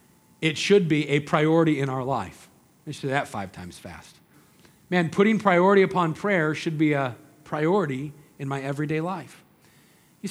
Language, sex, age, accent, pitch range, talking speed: English, male, 40-59, American, 145-180 Hz, 170 wpm